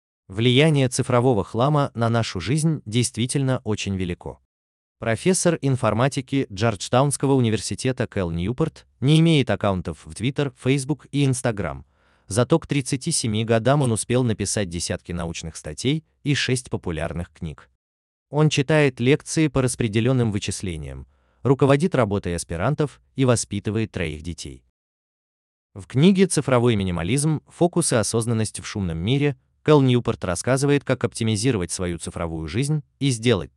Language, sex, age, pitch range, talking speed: Russian, male, 30-49, 90-135 Hz, 125 wpm